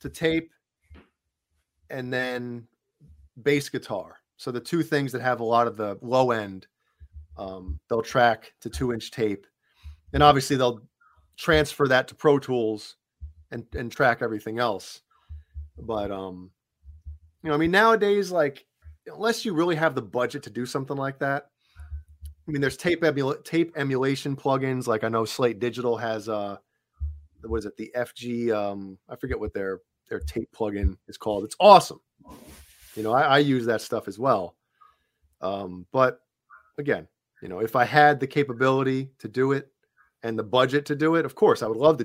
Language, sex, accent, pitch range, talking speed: English, male, American, 95-145 Hz, 175 wpm